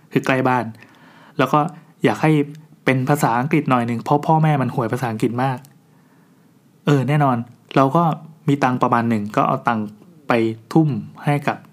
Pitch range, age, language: 115-145 Hz, 20-39, Thai